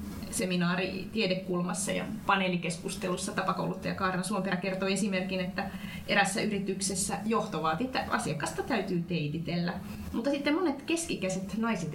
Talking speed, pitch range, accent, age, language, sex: 105 wpm, 175-215 Hz, native, 30-49, Finnish, female